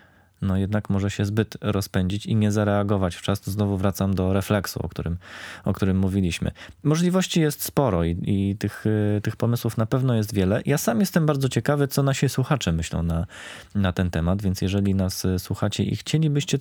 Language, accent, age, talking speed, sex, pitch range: Polish, native, 20-39, 185 wpm, male, 90-110 Hz